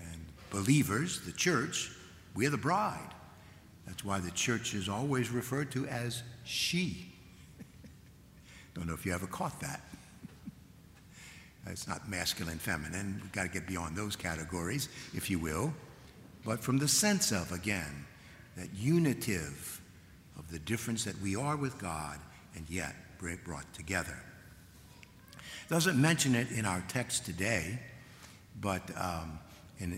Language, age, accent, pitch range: English, 60-79, American, 90-125 Hz